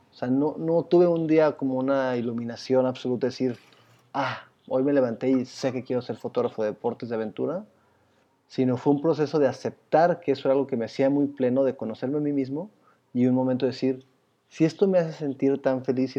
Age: 30-49